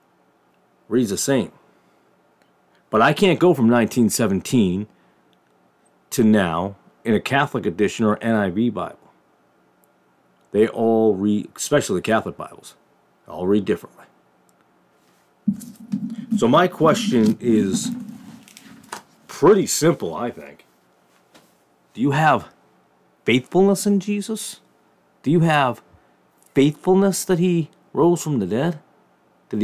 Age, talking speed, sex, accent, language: 40-59, 105 wpm, male, American, English